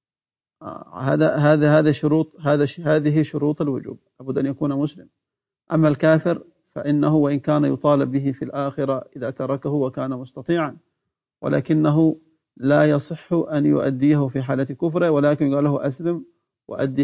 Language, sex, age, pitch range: Arabic, male, 50-69, 140-155 Hz